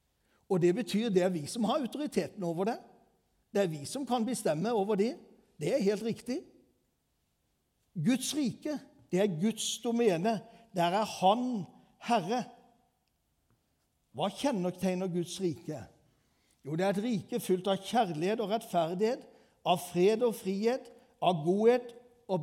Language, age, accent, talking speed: English, 60-79, Swedish, 165 wpm